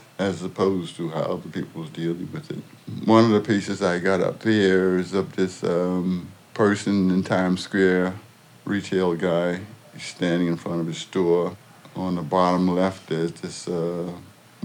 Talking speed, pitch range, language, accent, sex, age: 170 wpm, 90-100 Hz, English, American, male, 60-79